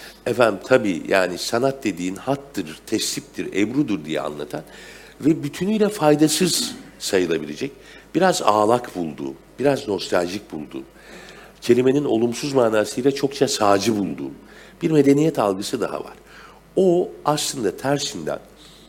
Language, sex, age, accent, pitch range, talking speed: Turkish, male, 60-79, native, 105-150 Hz, 110 wpm